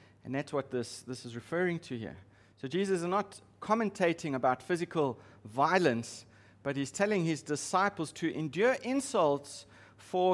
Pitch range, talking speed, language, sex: 105-180 Hz, 150 wpm, English, male